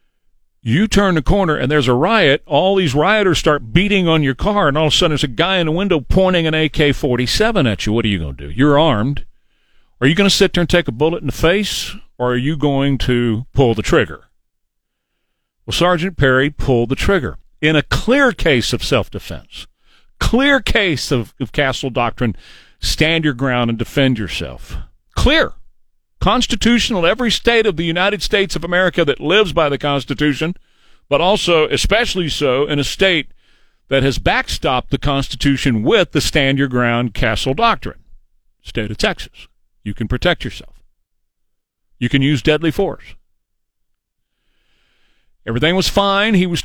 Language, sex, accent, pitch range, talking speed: English, male, American, 125-185 Hz, 175 wpm